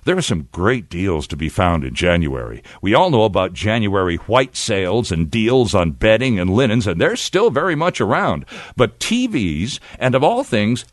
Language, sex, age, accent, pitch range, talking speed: English, male, 60-79, American, 105-150 Hz, 190 wpm